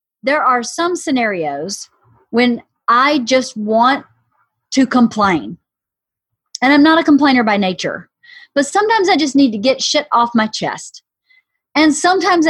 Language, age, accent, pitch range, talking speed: English, 40-59, American, 220-305 Hz, 145 wpm